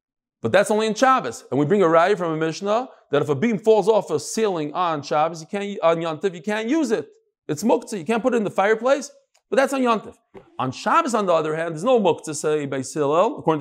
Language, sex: English, male